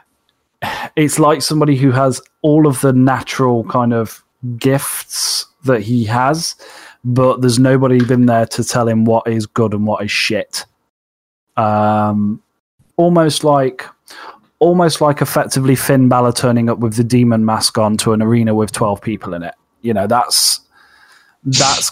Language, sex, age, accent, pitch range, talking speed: English, male, 20-39, British, 110-130 Hz, 155 wpm